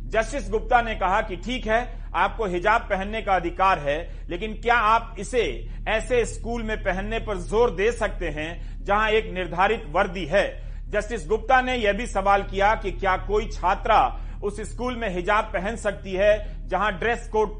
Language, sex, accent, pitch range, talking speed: Hindi, male, native, 190-230 Hz, 175 wpm